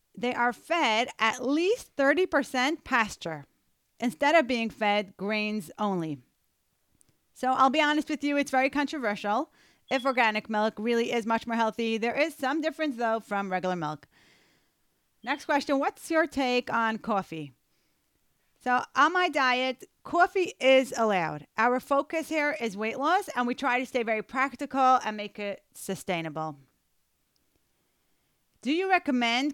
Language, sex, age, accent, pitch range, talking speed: English, female, 30-49, American, 210-285 Hz, 145 wpm